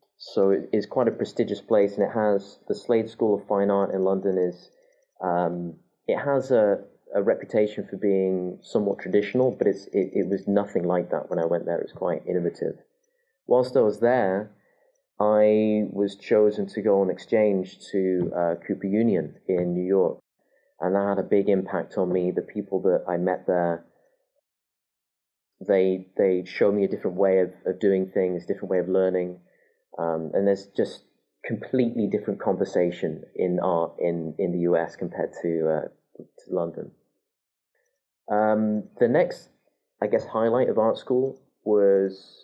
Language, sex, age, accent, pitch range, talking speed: English, male, 30-49, British, 90-105 Hz, 170 wpm